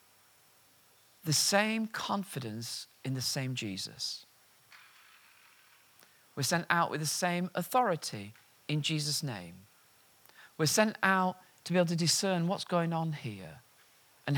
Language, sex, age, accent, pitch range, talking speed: English, male, 40-59, British, 125-175 Hz, 125 wpm